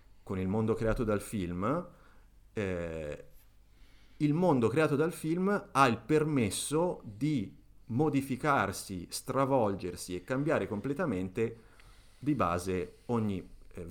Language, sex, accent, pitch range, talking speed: Italian, male, native, 90-115 Hz, 105 wpm